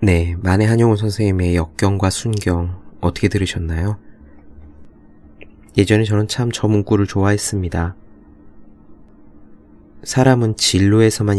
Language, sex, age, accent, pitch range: Korean, male, 20-39, native, 85-105 Hz